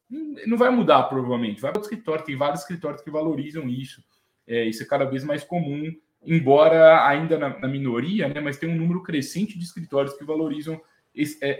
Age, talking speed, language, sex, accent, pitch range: 20-39, 190 wpm, Portuguese, male, Brazilian, 140-190 Hz